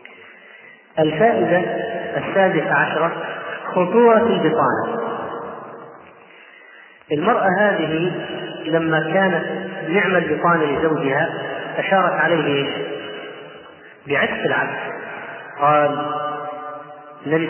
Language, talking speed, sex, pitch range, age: Arabic, 60 wpm, male, 150-180 Hz, 30-49